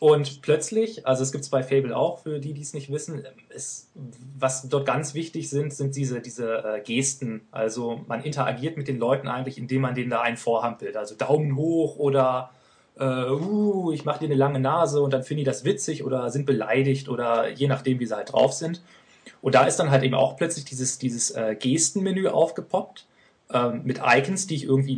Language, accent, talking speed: German, German, 210 wpm